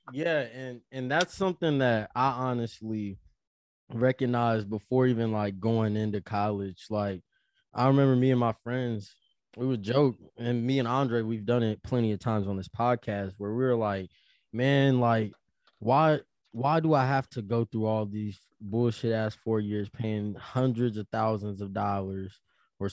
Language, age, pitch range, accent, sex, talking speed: English, 20-39, 105-130 Hz, American, male, 170 wpm